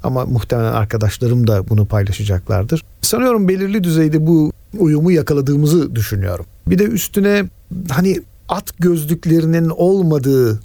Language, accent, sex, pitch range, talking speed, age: Turkish, native, male, 120-155 Hz, 115 wpm, 50-69